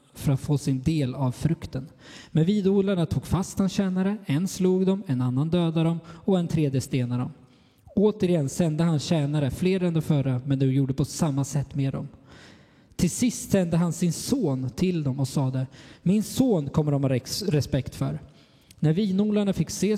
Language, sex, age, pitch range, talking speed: Swedish, male, 20-39, 135-170 Hz, 185 wpm